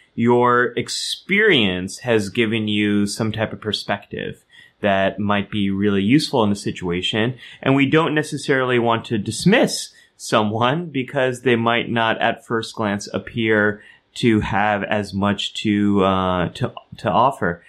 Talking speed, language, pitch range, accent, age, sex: 140 wpm, English, 100-120 Hz, American, 30-49, male